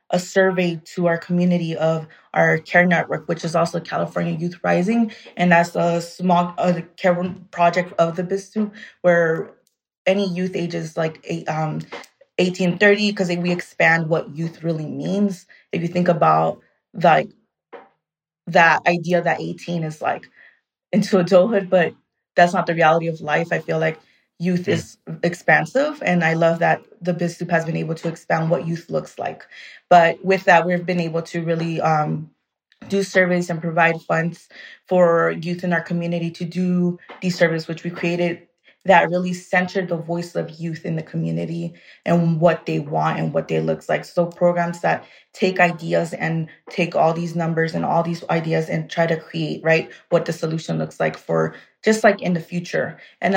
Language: English